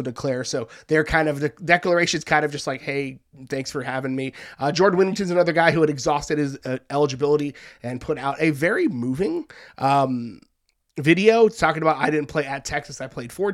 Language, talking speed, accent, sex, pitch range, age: English, 200 wpm, American, male, 145-175 Hz, 30-49